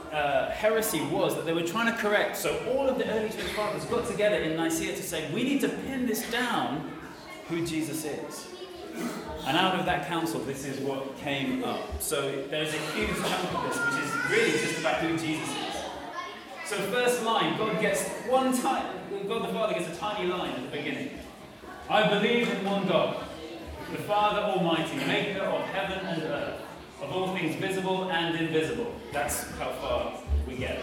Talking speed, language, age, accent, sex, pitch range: 190 wpm, English, 30-49, British, male, 160-220 Hz